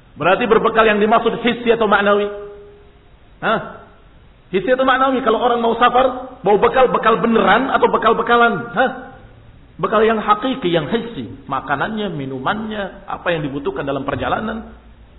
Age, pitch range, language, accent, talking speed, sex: 50-69, 165-235 Hz, Indonesian, native, 140 wpm, male